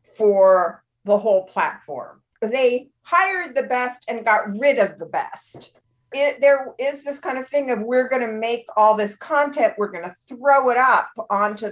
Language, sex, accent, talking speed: English, female, American, 180 wpm